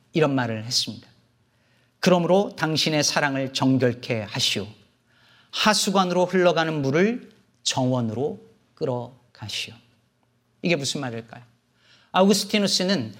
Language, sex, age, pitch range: Korean, male, 40-59, 120-185 Hz